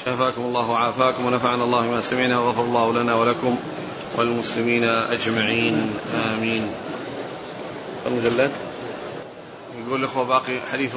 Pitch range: 130-145 Hz